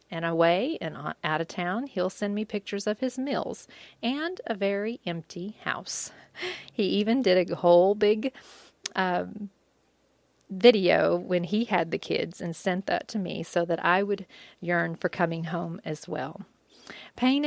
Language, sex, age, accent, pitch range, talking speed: English, female, 40-59, American, 170-235 Hz, 160 wpm